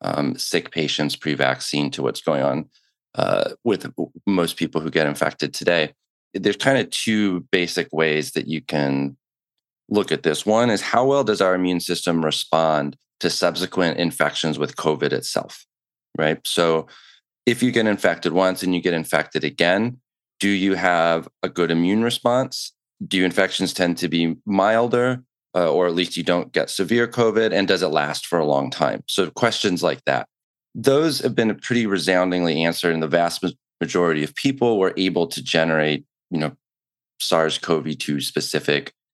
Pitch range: 80-100 Hz